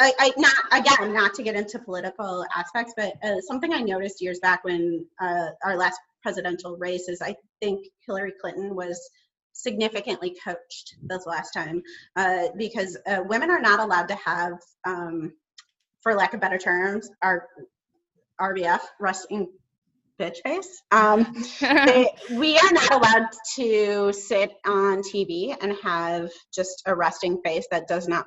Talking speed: 150 wpm